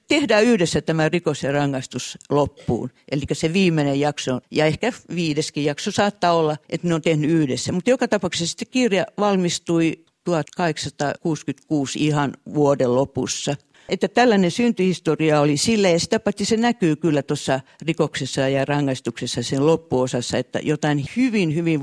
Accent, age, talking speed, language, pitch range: native, 50-69, 140 wpm, Finnish, 135-170 Hz